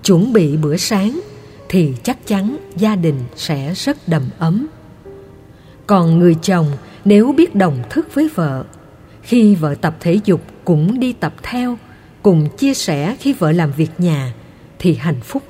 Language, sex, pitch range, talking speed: Vietnamese, female, 155-225 Hz, 165 wpm